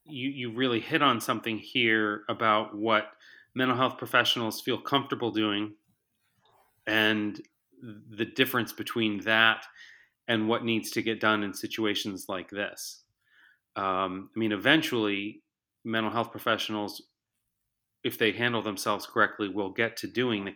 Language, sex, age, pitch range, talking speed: English, male, 30-49, 100-115 Hz, 135 wpm